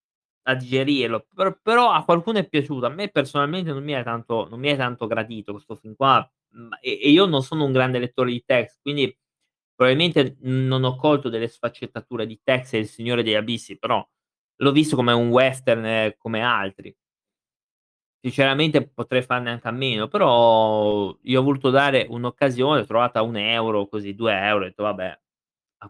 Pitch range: 115-150 Hz